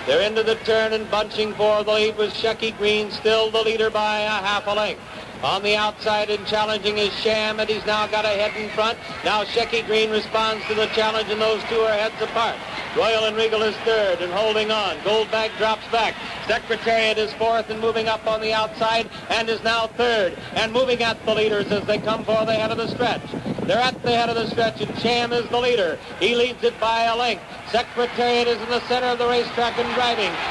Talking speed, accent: 225 wpm, American